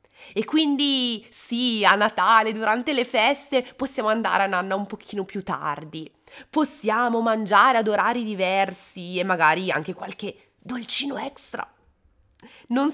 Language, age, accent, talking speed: Italian, 20-39, native, 130 wpm